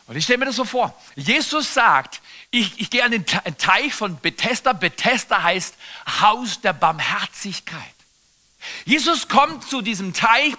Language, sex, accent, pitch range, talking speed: German, male, German, 175-245 Hz, 155 wpm